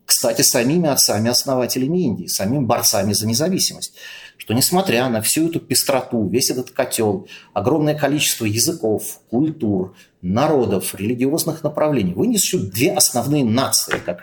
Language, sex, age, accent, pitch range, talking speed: Russian, male, 30-49, native, 105-145 Hz, 120 wpm